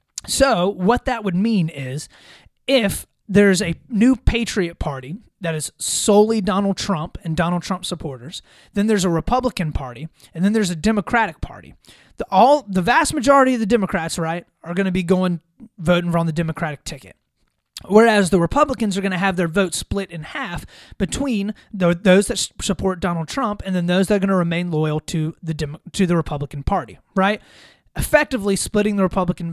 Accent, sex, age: American, male, 30-49